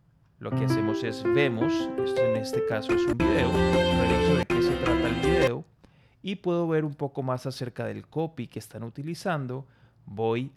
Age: 30-49